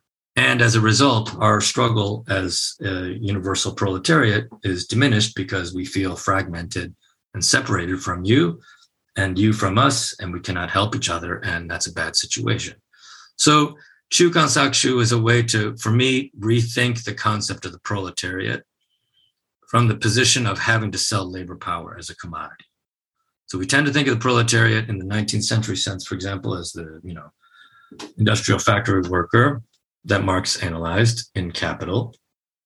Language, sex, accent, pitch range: English, male, American, 95-120 Hz